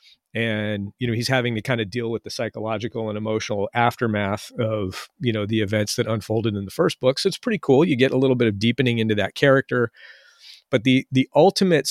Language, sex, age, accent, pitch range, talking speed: English, male, 40-59, American, 110-130 Hz, 220 wpm